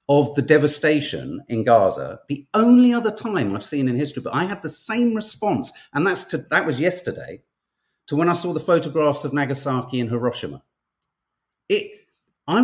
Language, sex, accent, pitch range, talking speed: English, male, British, 120-180 Hz, 175 wpm